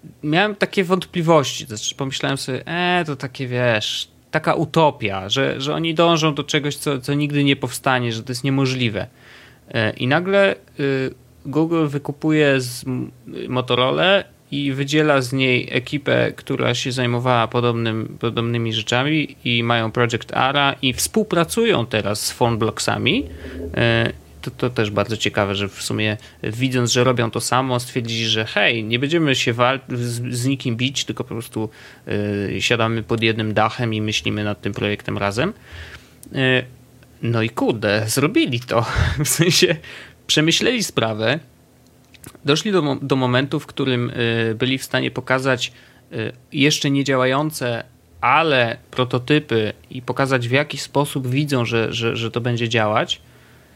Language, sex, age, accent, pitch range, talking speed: Polish, male, 30-49, native, 115-145 Hz, 140 wpm